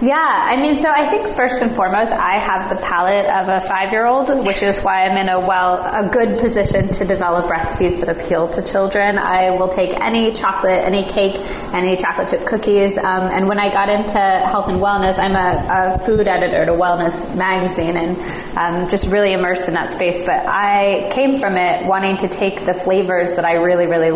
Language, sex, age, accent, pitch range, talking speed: English, female, 20-39, American, 180-200 Hz, 205 wpm